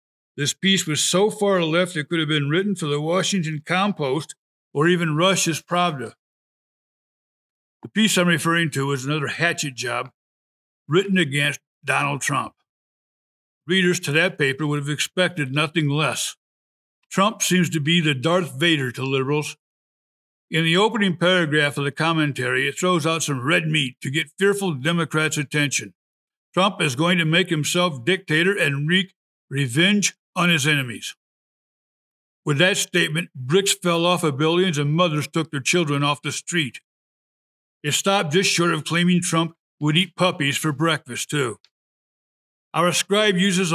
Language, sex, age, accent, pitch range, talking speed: English, male, 60-79, American, 150-185 Hz, 155 wpm